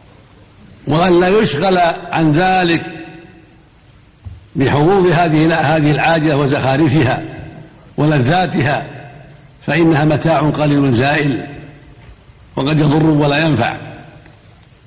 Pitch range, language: 145-175 Hz, Arabic